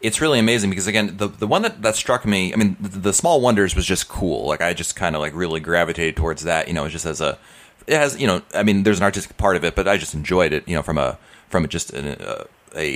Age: 30-49